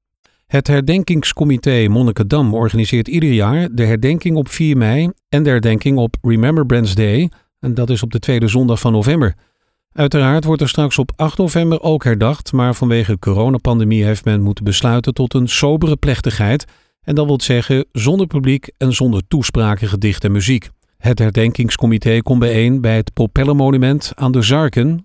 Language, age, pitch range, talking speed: Dutch, 50-69, 110-145 Hz, 165 wpm